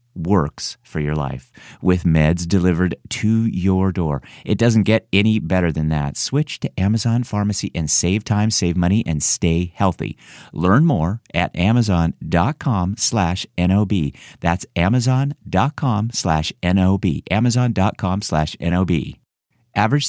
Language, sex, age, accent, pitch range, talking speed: English, male, 50-69, American, 85-110 Hz, 120 wpm